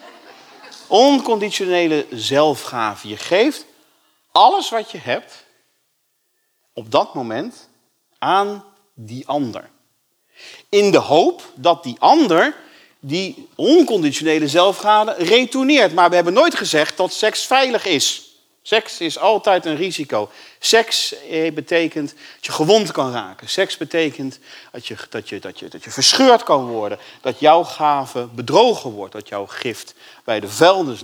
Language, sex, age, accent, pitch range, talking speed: Dutch, male, 40-59, Dutch, 135-225 Hz, 135 wpm